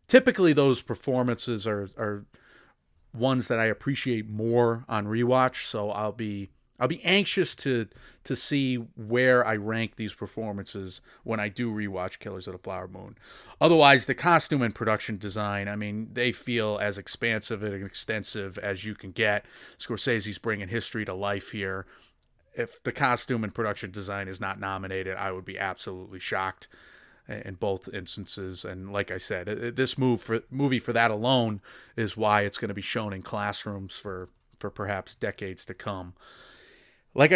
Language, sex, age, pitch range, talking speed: English, male, 30-49, 100-120 Hz, 165 wpm